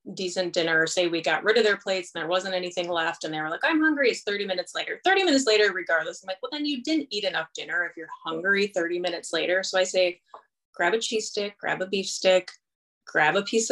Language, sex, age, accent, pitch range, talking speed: English, female, 20-39, American, 180-245 Hz, 250 wpm